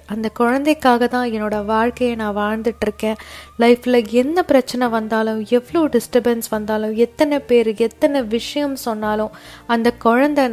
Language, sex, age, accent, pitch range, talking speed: Tamil, female, 20-39, native, 225-275 Hz, 105 wpm